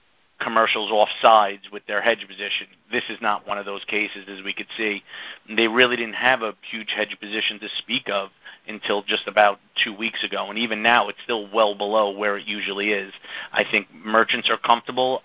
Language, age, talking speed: English, 30-49, 200 wpm